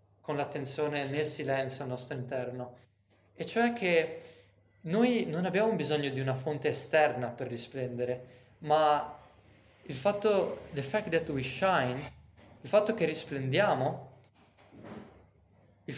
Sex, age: male, 20-39